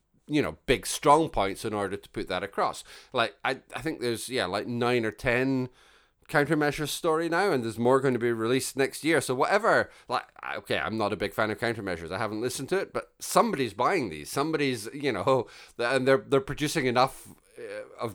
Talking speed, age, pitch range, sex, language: 205 wpm, 30-49, 105-135 Hz, male, English